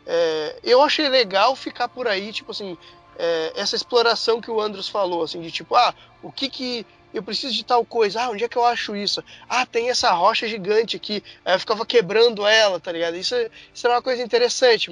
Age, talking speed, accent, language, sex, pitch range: 20-39, 220 wpm, Brazilian, Portuguese, male, 195-255 Hz